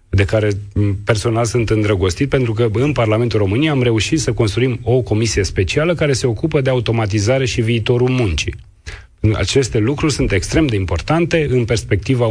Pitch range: 100-130 Hz